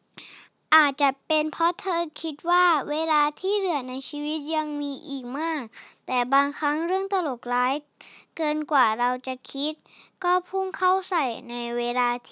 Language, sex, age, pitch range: Thai, male, 20-39, 255-330 Hz